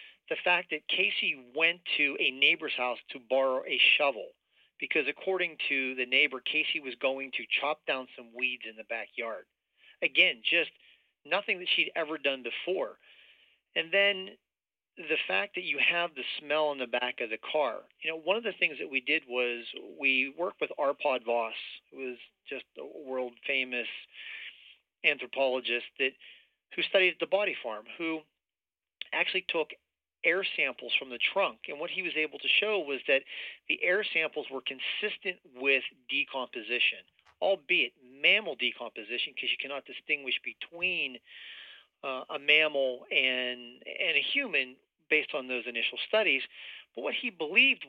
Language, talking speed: English, 160 wpm